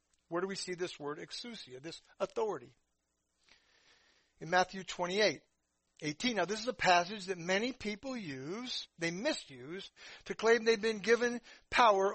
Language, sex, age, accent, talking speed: English, male, 60-79, American, 150 wpm